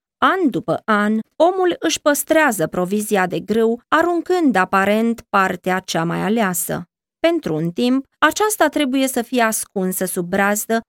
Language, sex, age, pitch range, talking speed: Romanian, female, 20-39, 175-235 Hz, 140 wpm